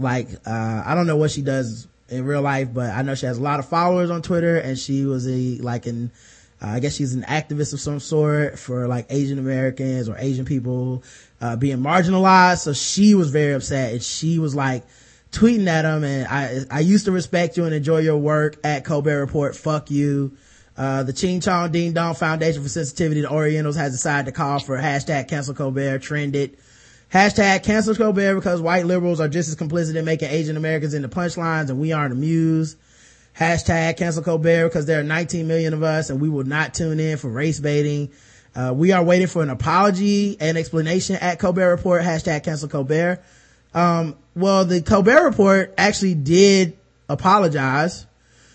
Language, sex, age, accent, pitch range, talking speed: English, male, 20-39, American, 135-175 Hz, 195 wpm